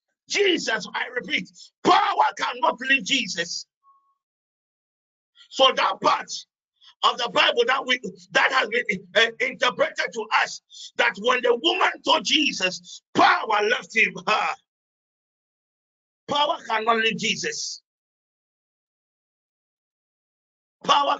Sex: male